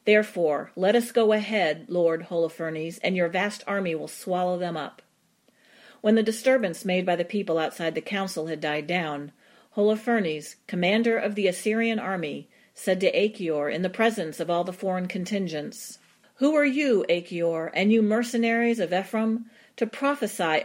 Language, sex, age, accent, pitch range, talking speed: English, female, 40-59, American, 170-225 Hz, 165 wpm